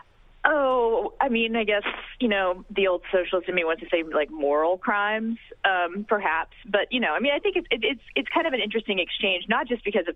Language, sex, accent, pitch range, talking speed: English, female, American, 160-235 Hz, 240 wpm